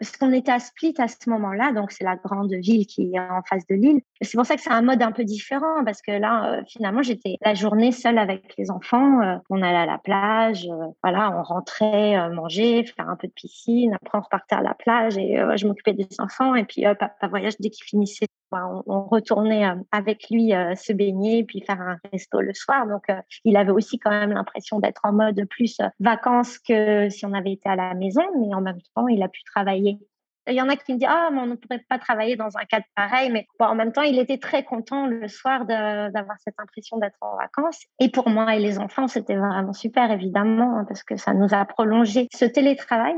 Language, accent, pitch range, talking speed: French, French, 205-250 Hz, 240 wpm